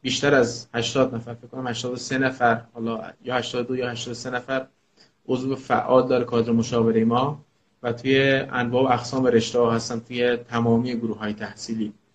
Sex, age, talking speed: male, 30-49, 170 wpm